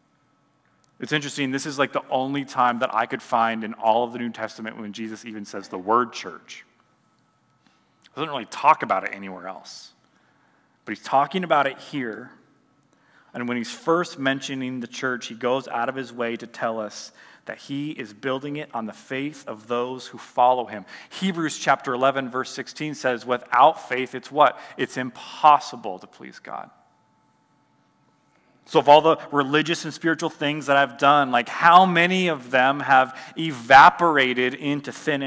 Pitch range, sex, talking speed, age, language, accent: 120-150 Hz, male, 175 wpm, 30-49, English, American